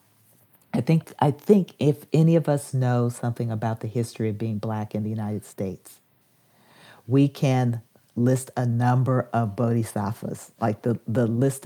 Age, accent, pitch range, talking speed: 50-69, American, 115-130 Hz, 160 wpm